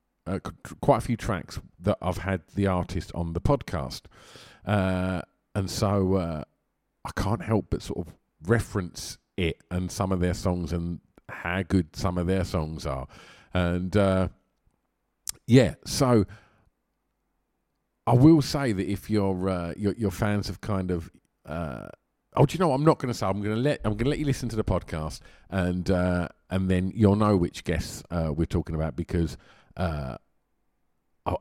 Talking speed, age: 180 wpm, 50-69